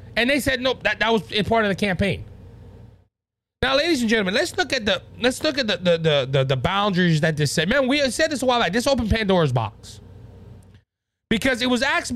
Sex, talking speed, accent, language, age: male, 225 wpm, American, English, 30-49